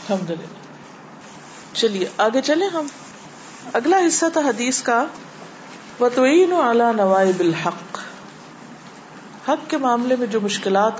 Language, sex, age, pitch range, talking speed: Urdu, female, 50-69, 190-255 Hz, 70 wpm